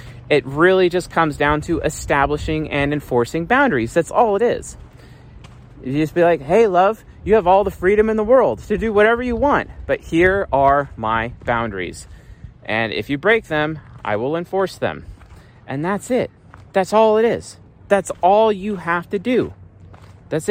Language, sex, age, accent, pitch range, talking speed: English, male, 30-49, American, 110-165 Hz, 180 wpm